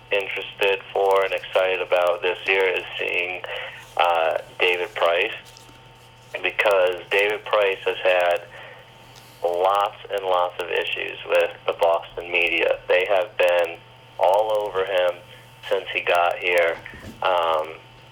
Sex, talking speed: male, 125 wpm